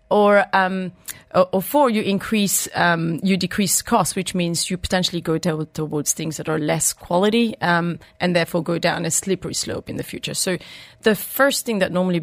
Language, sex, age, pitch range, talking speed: English, female, 30-49, 170-205 Hz, 185 wpm